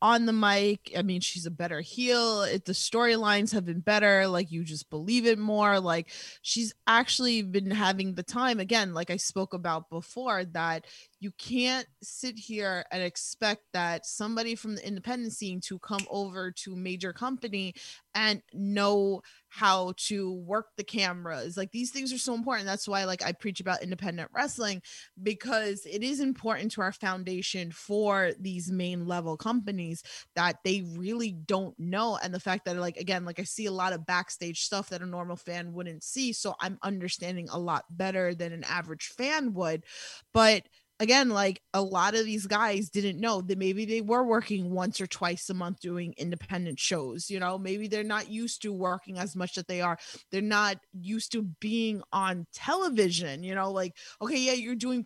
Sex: female